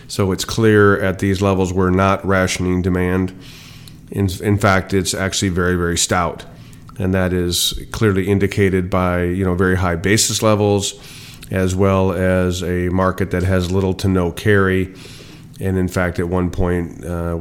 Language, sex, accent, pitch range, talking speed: English, male, American, 95-105 Hz, 165 wpm